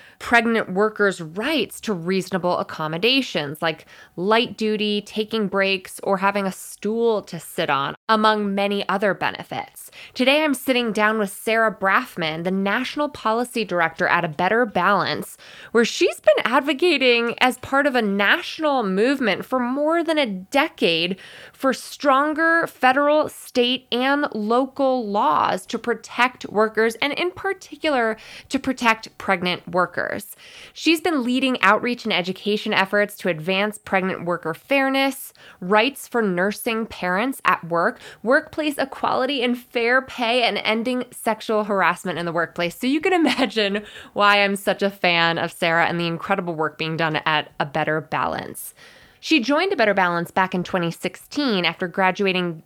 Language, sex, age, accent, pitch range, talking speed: English, female, 20-39, American, 185-255 Hz, 150 wpm